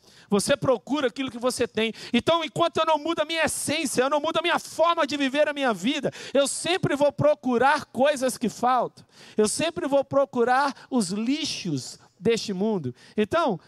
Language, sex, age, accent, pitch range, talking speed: Portuguese, male, 50-69, Brazilian, 210-285 Hz, 180 wpm